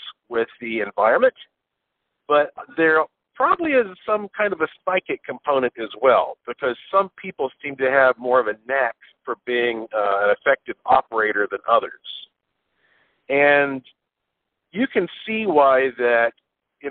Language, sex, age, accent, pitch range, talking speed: English, male, 50-69, American, 130-170 Hz, 135 wpm